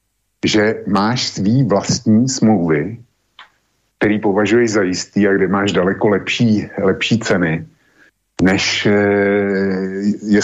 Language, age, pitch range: Slovak, 50-69, 95-110 Hz